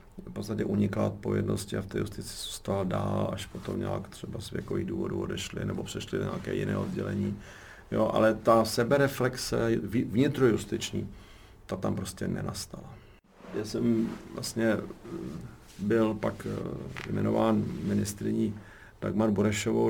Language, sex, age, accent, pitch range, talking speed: Czech, male, 50-69, native, 100-110 Hz, 125 wpm